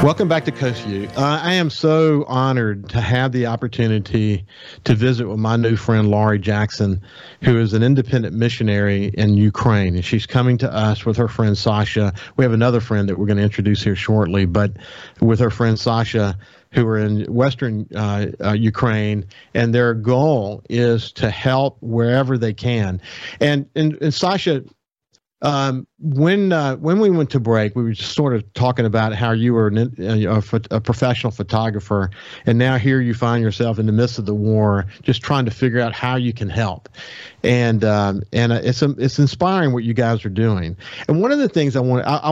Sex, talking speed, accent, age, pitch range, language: male, 195 wpm, American, 50-69, 105-130 Hz, English